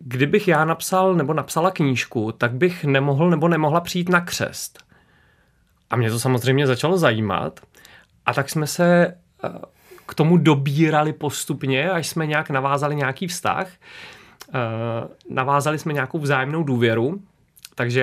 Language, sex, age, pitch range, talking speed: Czech, male, 30-49, 130-155 Hz, 135 wpm